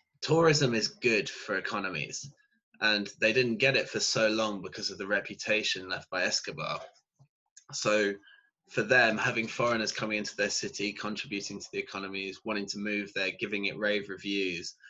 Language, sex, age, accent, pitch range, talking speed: English, male, 20-39, British, 100-115 Hz, 165 wpm